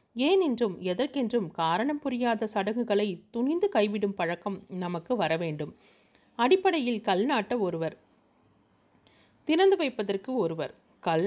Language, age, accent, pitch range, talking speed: Tamil, 30-49, native, 195-260 Hz, 95 wpm